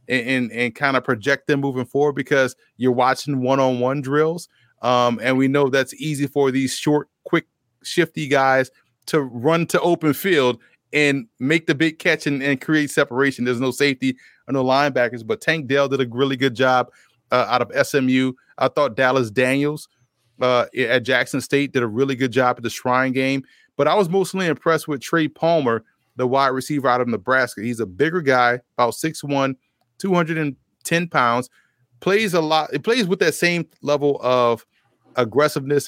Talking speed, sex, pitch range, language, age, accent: 180 wpm, male, 125-150 Hz, English, 30-49, American